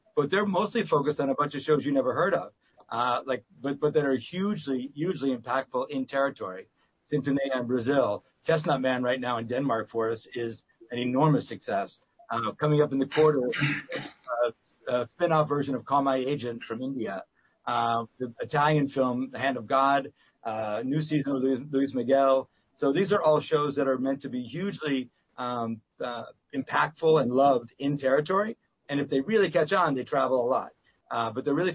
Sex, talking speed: male, 195 wpm